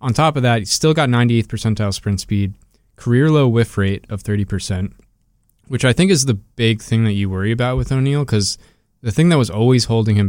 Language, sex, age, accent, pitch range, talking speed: English, male, 20-39, American, 100-125 Hz, 220 wpm